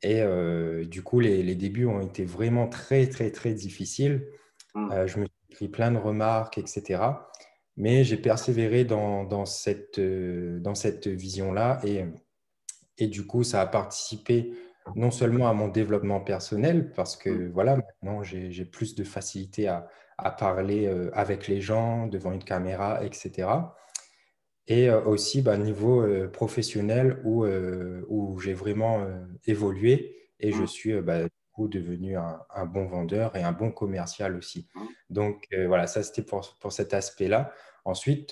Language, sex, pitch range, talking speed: French, male, 95-115 Hz, 165 wpm